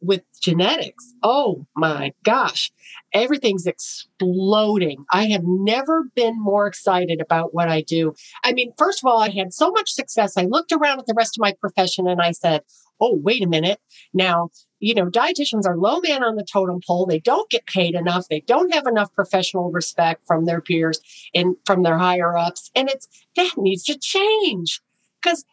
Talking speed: 190 wpm